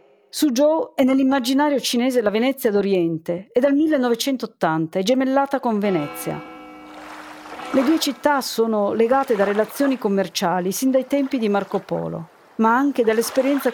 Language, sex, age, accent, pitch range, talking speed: Italian, female, 40-59, native, 185-265 Hz, 135 wpm